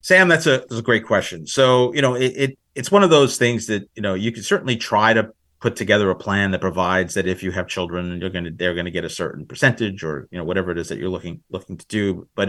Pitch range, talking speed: 90-105 Hz, 275 wpm